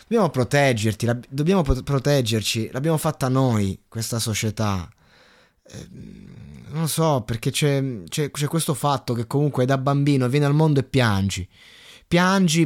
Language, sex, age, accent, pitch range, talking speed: Italian, male, 20-39, native, 110-145 Hz, 130 wpm